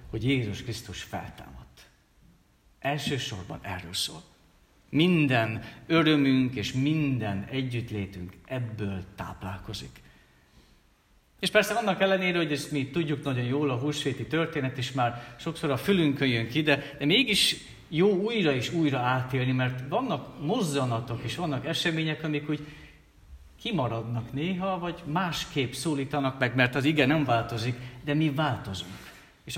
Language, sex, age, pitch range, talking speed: Hungarian, male, 50-69, 110-150 Hz, 130 wpm